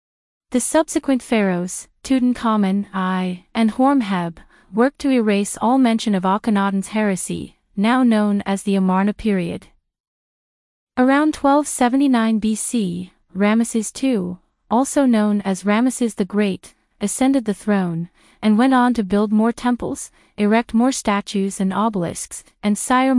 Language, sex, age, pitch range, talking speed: English, female, 30-49, 195-245 Hz, 125 wpm